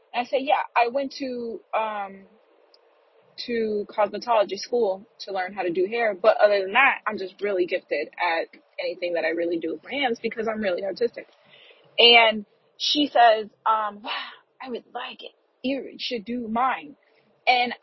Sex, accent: female, American